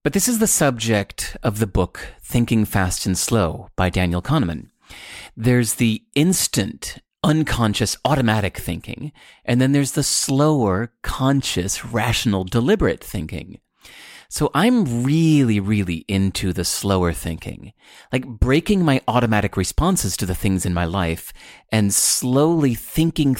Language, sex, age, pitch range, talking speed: English, male, 30-49, 95-140 Hz, 135 wpm